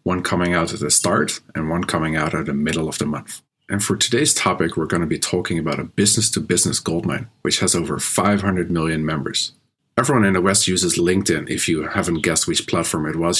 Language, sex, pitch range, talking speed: English, male, 90-115 Hz, 220 wpm